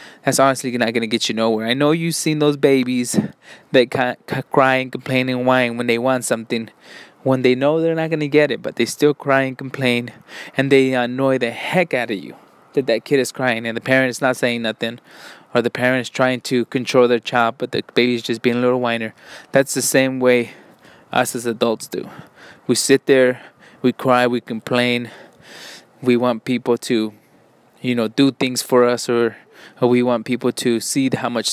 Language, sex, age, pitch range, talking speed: English, male, 20-39, 120-140 Hz, 210 wpm